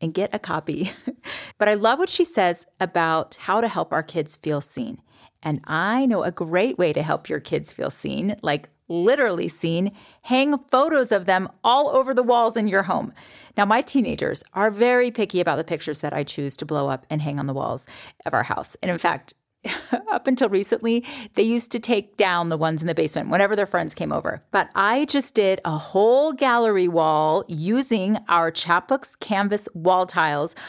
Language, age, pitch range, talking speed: English, 30-49, 175-245 Hz, 200 wpm